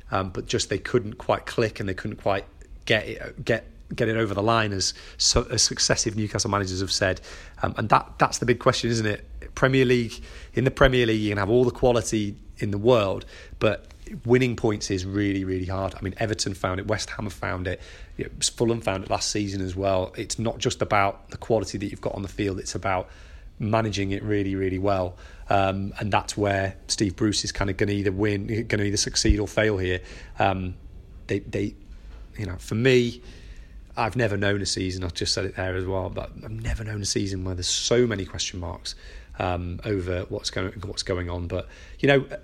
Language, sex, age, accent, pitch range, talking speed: English, male, 30-49, British, 95-115 Hz, 220 wpm